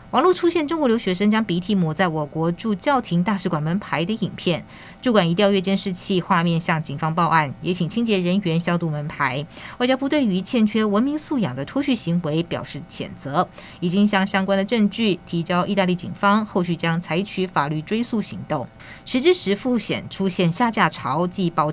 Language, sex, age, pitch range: Chinese, female, 20-39, 170-220 Hz